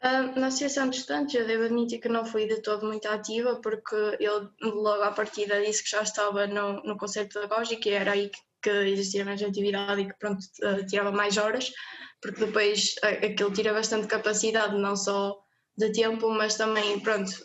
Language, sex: Portuguese, female